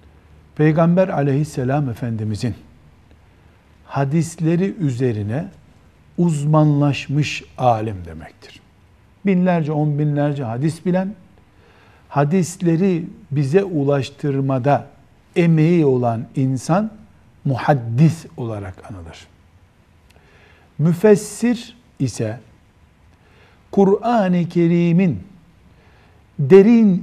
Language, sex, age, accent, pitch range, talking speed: Turkish, male, 60-79, native, 110-175 Hz, 60 wpm